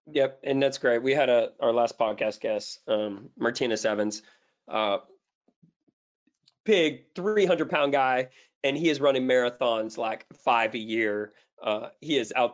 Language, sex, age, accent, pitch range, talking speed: English, male, 30-49, American, 110-135 Hz, 155 wpm